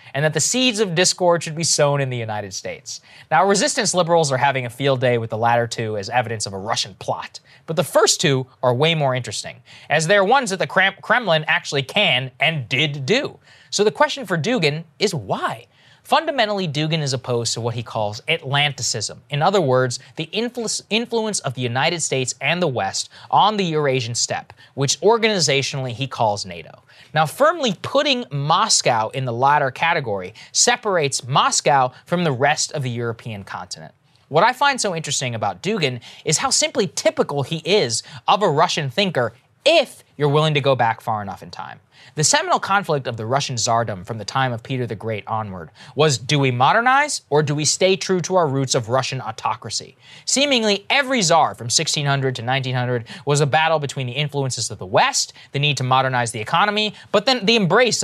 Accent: American